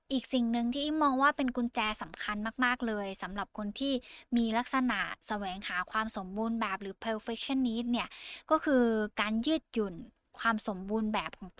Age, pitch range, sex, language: 10-29, 205-255 Hz, female, Thai